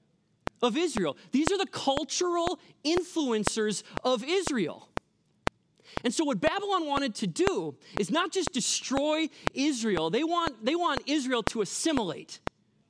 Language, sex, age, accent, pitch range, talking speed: English, male, 30-49, American, 210-310 Hz, 130 wpm